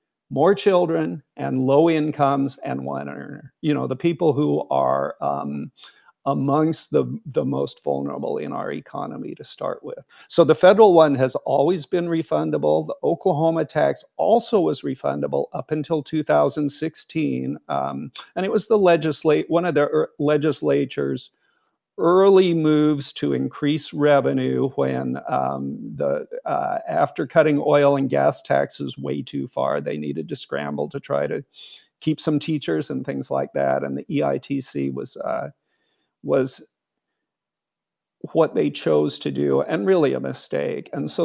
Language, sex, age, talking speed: English, male, 50-69, 150 wpm